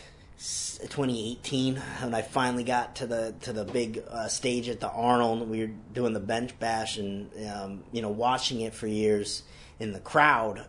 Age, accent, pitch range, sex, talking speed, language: 30-49, American, 105-120 Hz, male, 180 wpm, English